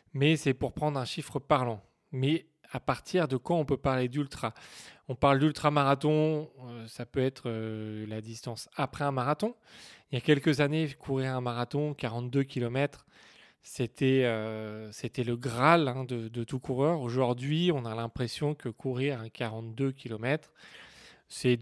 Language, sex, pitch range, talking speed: French, male, 125-150 Hz, 160 wpm